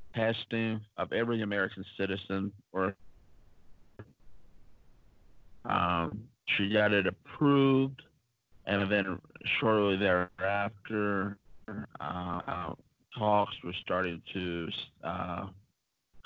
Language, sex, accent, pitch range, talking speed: English, male, American, 95-115 Hz, 80 wpm